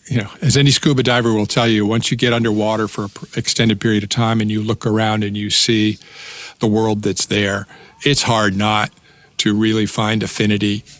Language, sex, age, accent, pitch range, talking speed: English, male, 50-69, American, 105-115 Hz, 200 wpm